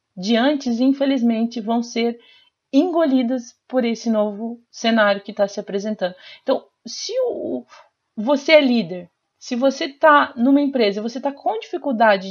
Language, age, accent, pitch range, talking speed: Portuguese, 40-59, Brazilian, 215-275 Hz, 140 wpm